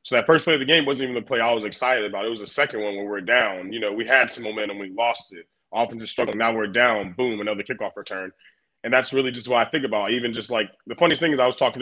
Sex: male